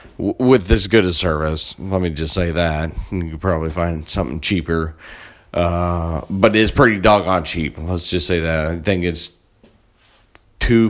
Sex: male